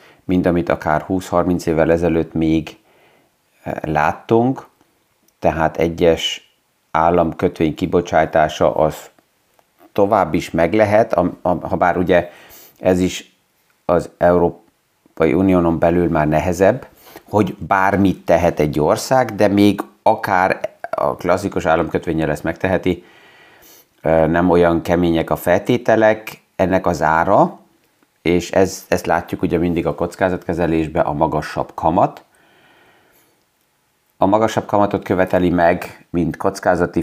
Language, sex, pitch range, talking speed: Hungarian, male, 85-100 Hz, 110 wpm